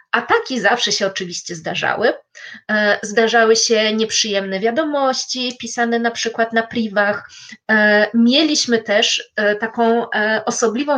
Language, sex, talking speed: Polish, female, 105 wpm